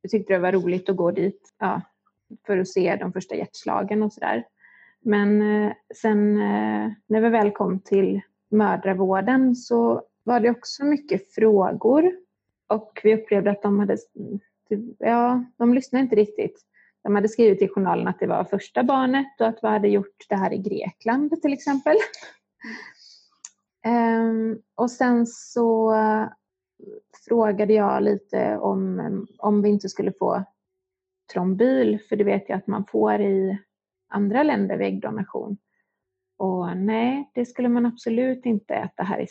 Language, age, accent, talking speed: Swedish, 30-49, native, 145 wpm